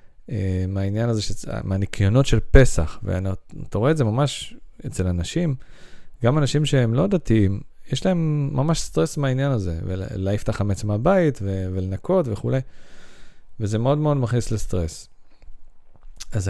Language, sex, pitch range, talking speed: Hebrew, male, 100-140 Hz, 130 wpm